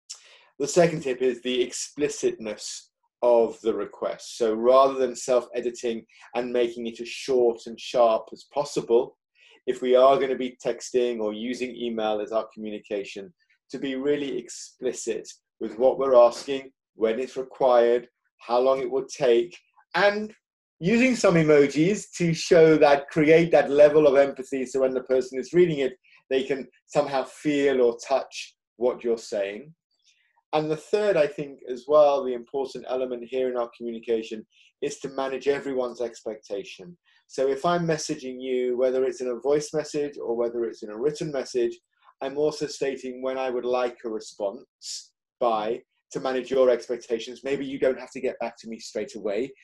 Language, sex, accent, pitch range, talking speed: English, male, British, 125-150 Hz, 170 wpm